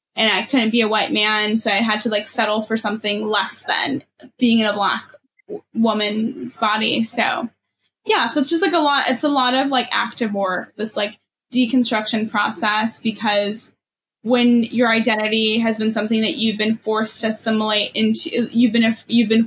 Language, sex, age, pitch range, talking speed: English, female, 10-29, 220-245 Hz, 185 wpm